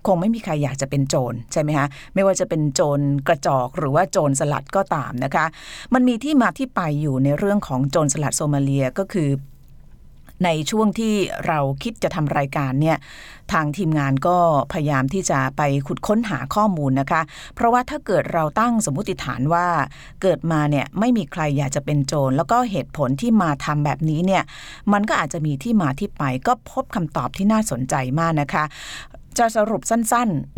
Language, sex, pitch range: Thai, female, 140-195 Hz